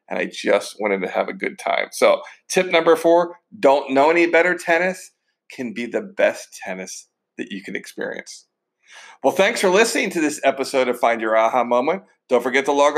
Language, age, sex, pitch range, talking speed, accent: English, 50-69, male, 135-190 Hz, 200 wpm, American